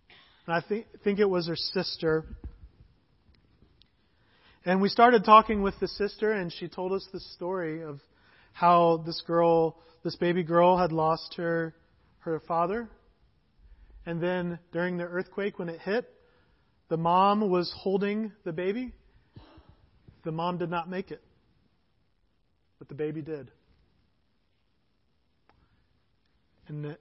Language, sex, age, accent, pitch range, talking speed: English, male, 40-59, American, 165-210 Hz, 130 wpm